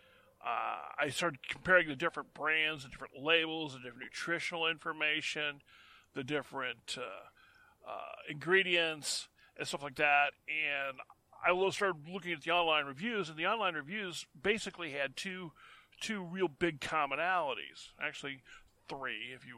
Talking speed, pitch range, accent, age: 140 wpm, 135-170 Hz, American, 40-59